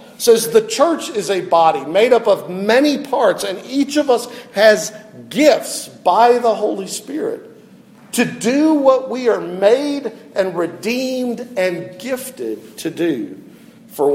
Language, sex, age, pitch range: English, male, 50-69, 180-240 Hz